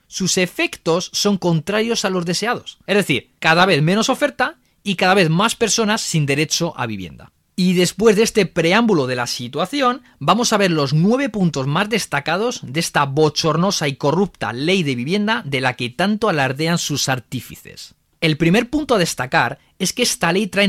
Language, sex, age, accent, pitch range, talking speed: Spanish, male, 30-49, Spanish, 150-225 Hz, 185 wpm